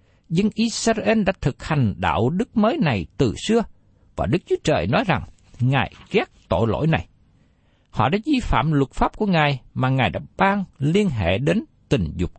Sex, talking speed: male, 190 wpm